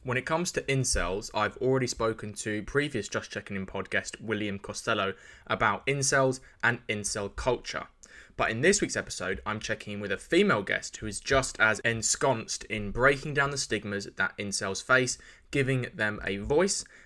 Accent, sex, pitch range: British, male, 105-130 Hz